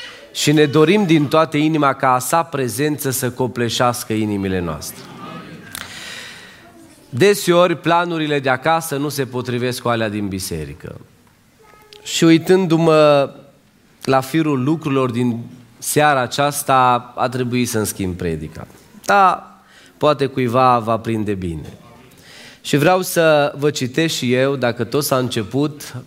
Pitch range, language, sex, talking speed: 115-145 Hz, Romanian, male, 125 wpm